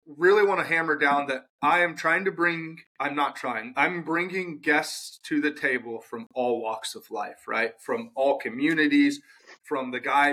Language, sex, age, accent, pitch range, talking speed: English, male, 30-49, American, 130-160 Hz, 185 wpm